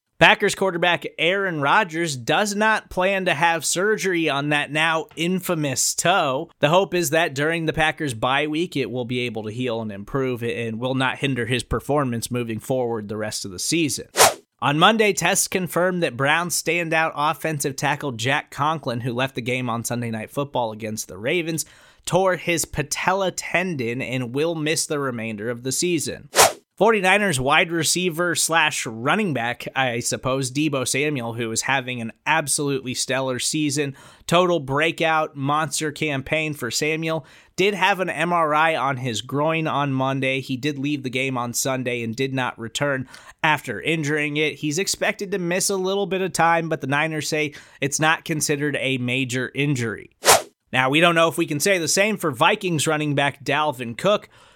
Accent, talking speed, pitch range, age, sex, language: American, 175 wpm, 130-165 Hz, 20-39, male, English